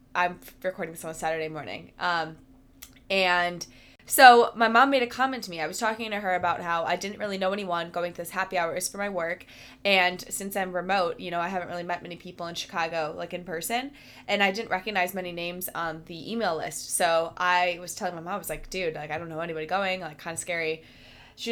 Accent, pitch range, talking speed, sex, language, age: American, 175-275 Hz, 235 wpm, female, English, 20-39